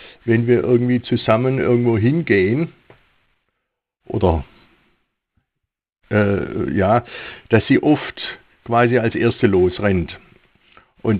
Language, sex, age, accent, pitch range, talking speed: German, male, 60-79, German, 105-125 Hz, 90 wpm